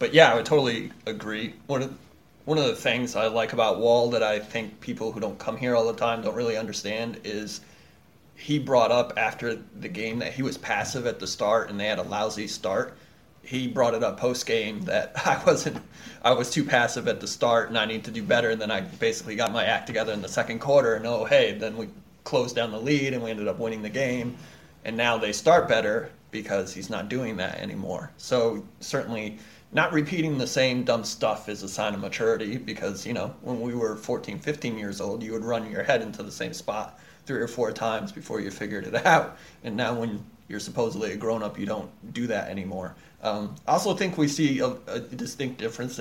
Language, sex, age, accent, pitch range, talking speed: English, male, 30-49, American, 110-135 Hz, 225 wpm